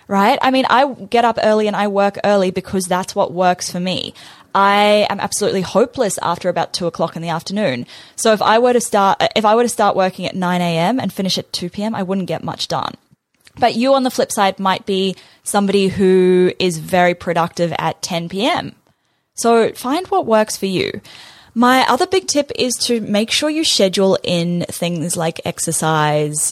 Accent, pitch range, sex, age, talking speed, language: Australian, 175-215 Hz, female, 10-29, 200 wpm, English